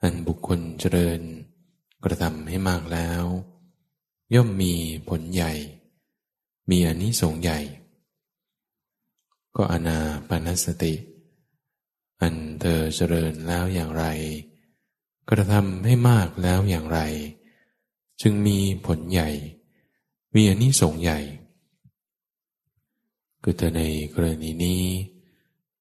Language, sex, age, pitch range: English, male, 20-39, 80-105 Hz